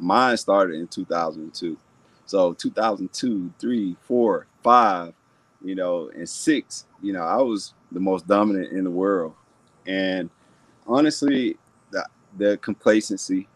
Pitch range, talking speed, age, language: 85-100 Hz, 125 wpm, 30-49, English